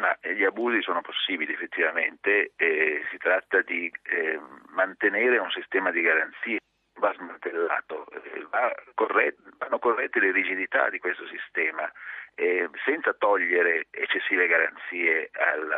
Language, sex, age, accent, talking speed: Italian, male, 40-59, native, 120 wpm